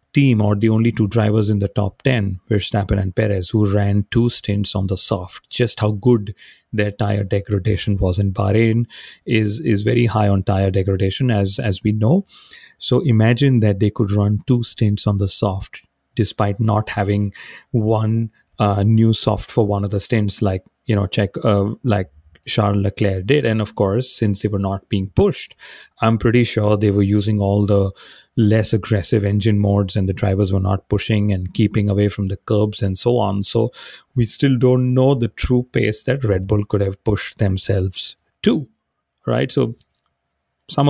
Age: 30-49